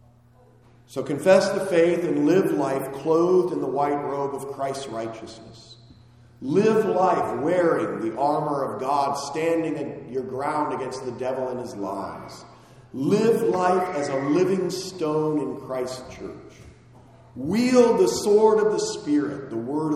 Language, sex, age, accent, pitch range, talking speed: English, male, 40-59, American, 120-160 Hz, 145 wpm